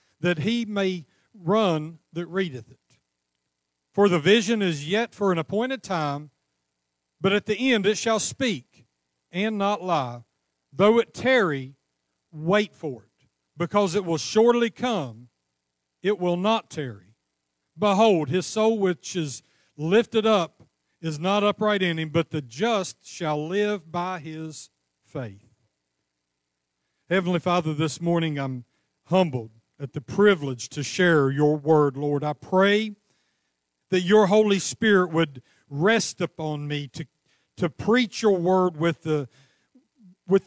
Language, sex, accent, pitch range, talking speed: English, male, American, 145-200 Hz, 140 wpm